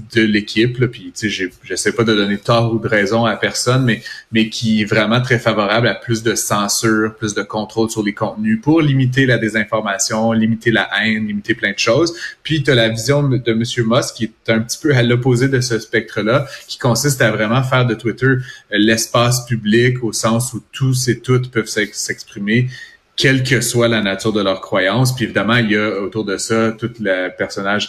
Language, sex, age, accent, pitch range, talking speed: French, male, 30-49, Canadian, 105-125 Hz, 210 wpm